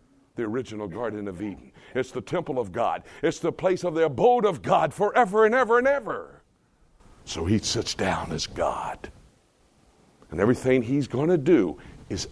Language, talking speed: English, 175 wpm